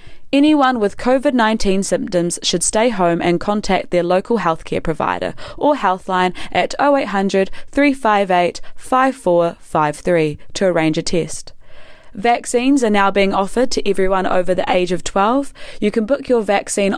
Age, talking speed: 20-39, 140 wpm